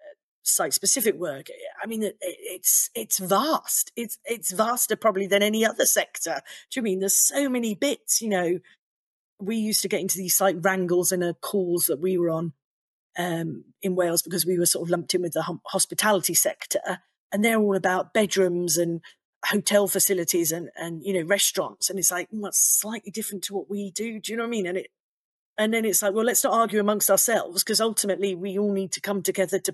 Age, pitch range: 40-59, 180-215 Hz